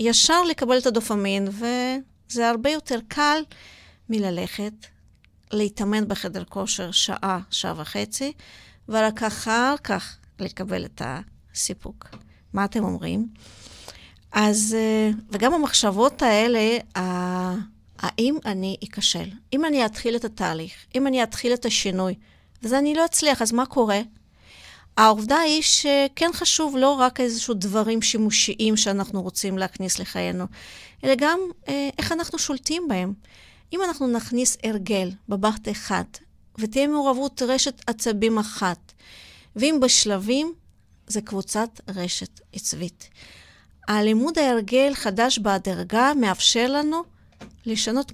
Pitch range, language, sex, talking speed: 205-275 Hz, Hebrew, female, 115 wpm